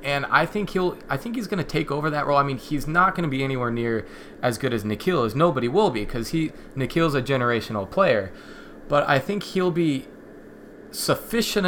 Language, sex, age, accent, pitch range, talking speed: English, male, 20-39, American, 115-155 Hz, 205 wpm